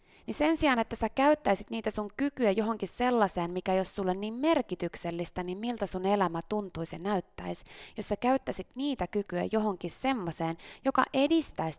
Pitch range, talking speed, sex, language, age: 165-225 Hz, 165 wpm, female, Finnish, 20-39